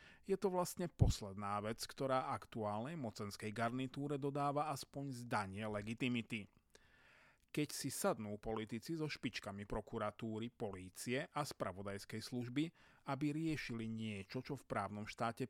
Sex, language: male, Slovak